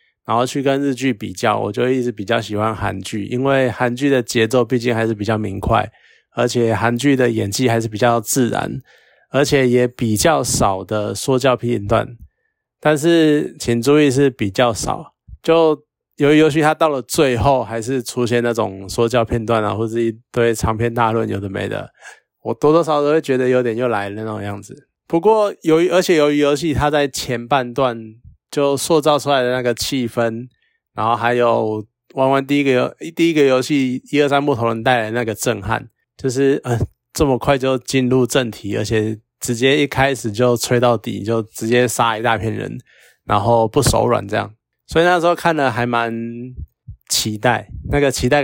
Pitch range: 115-140 Hz